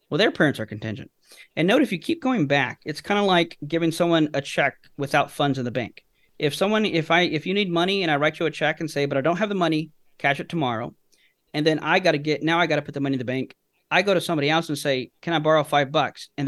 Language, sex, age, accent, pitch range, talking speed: English, male, 40-59, American, 140-170 Hz, 290 wpm